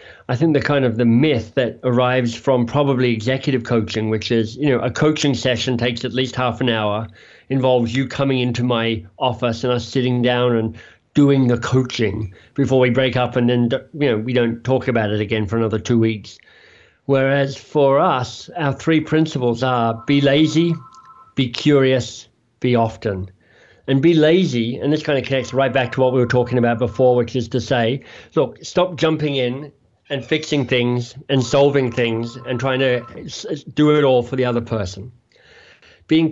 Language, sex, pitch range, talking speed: English, male, 120-140 Hz, 185 wpm